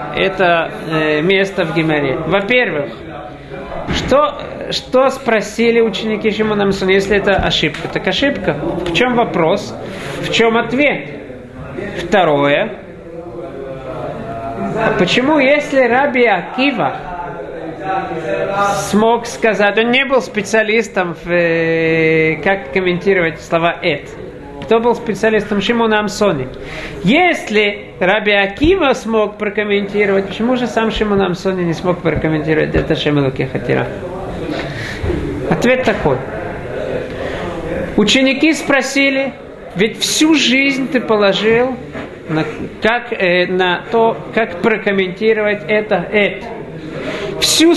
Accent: native